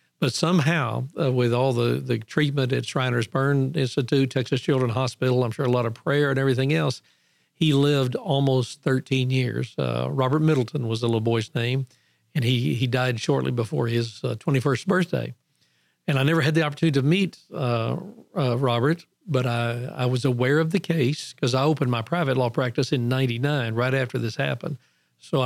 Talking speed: 190 wpm